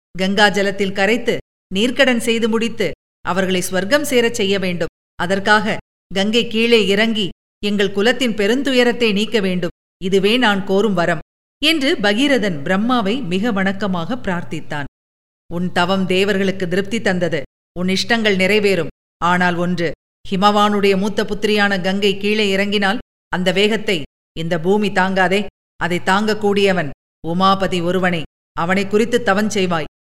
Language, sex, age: Tamil, female, 50-69